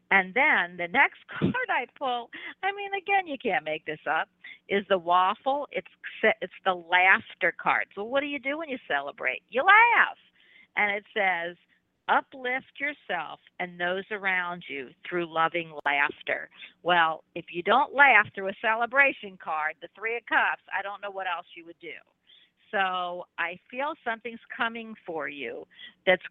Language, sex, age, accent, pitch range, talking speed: English, female, 50-69, American, 170-235 Hz, 170 wpm